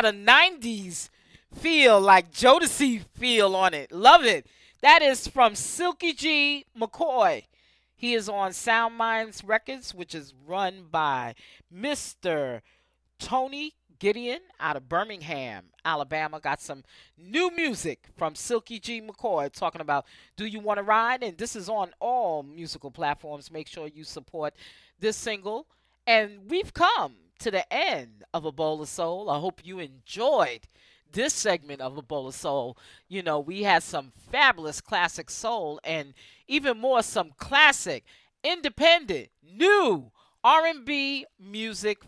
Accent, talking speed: American, 145 wpm